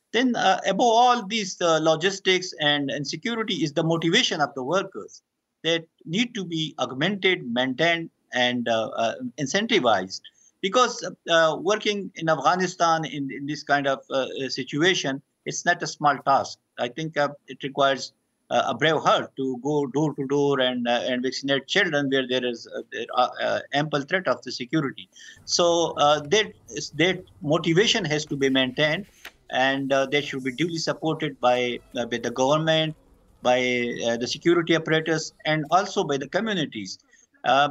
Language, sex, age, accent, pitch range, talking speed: English, male, 50-69, Indian, 135-180 Hz, 165 wpm